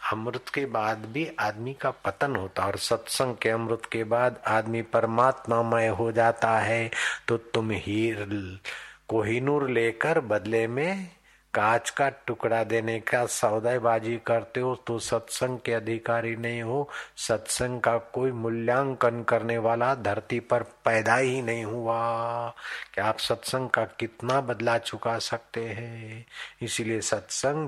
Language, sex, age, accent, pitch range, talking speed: Hindi, male, 50-69, native, 115-120 Hz, 145 wpm